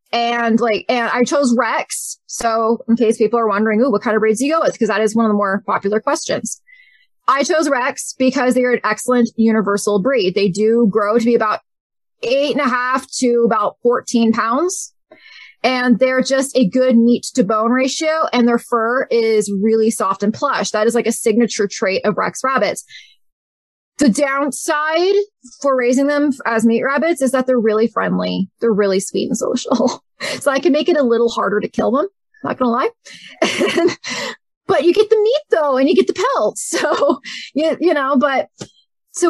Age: 20-39